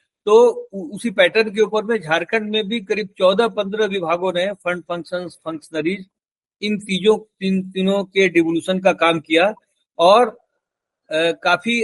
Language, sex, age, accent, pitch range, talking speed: Hindi, male, 50-69, native, 180-225 Hz, 140 wpm